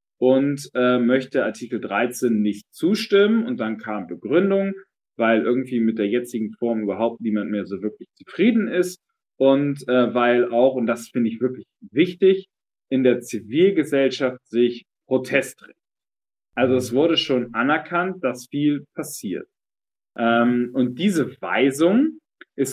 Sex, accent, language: male, German, German